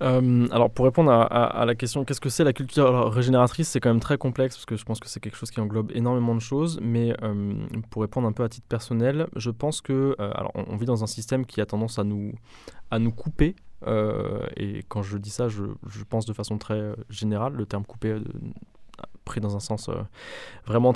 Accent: French